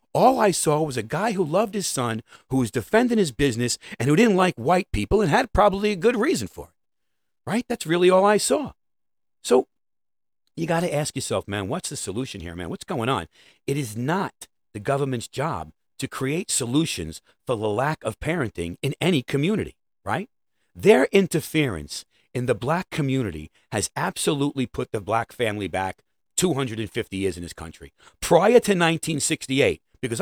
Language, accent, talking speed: English, American, 180 wpm